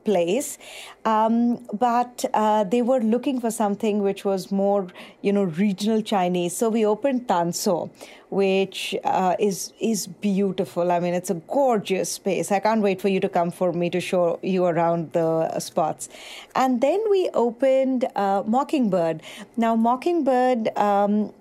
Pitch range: 185-220 Hz